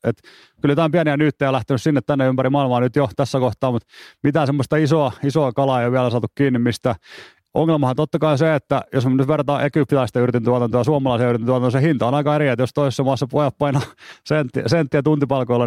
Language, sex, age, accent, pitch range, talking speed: Finnish, male, 30-49, native, 120-140 Hz, 205 wpm